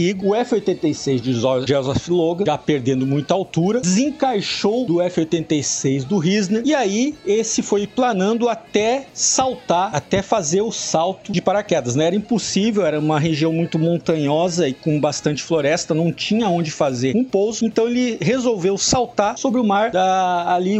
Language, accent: Portuguese, Brazilian